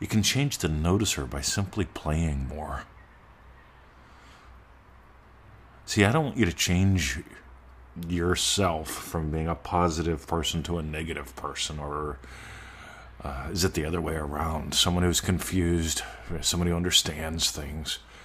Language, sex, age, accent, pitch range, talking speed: English, male, 40-59, American, 80-100 Hz, 135 wpm